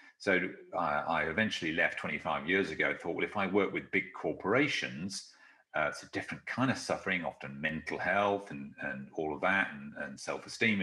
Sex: male